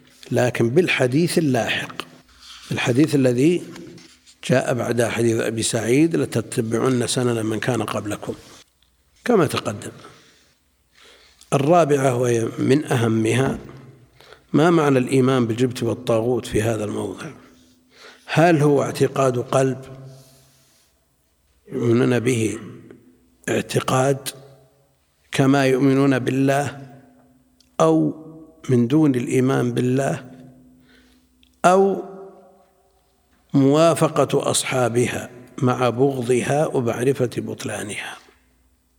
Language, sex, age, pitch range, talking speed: Arabic, male, 60-79, 115-140 Hz, 80 wpm